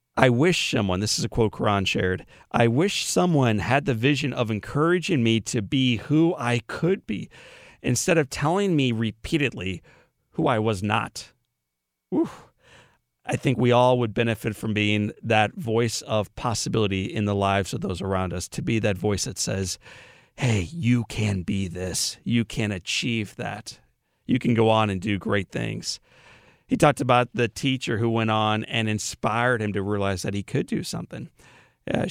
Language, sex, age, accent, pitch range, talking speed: English, male, 40-59, American, 105-135 Hz, 175 wpm